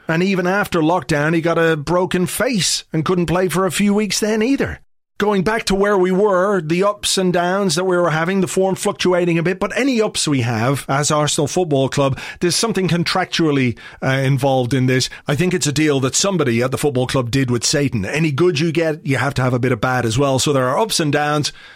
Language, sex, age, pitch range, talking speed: English, male, 30-49, 135-180 Hz, 240 wpm